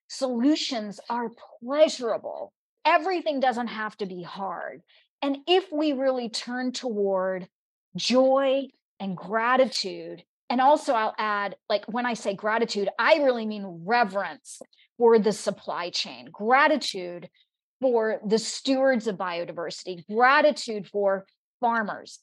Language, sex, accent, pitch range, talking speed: English, female, American, 200-260 Hz, 120 wpm